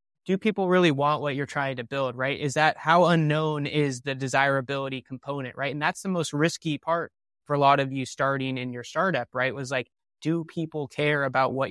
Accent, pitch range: American, 130-150 Hz